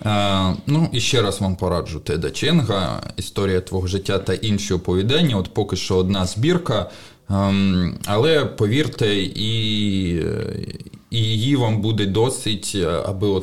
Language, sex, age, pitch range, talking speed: Ukrainian, male, 20-39, 90-110 Hz, 120 wpm